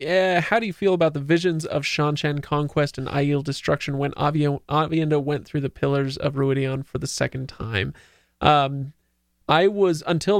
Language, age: English, 20-39